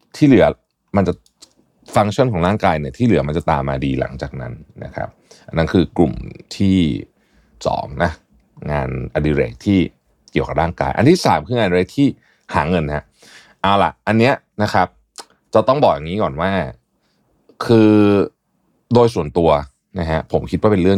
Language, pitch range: Thai, 80-115 Hz